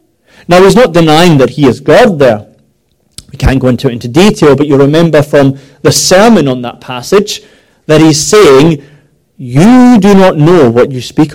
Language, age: English, 30-49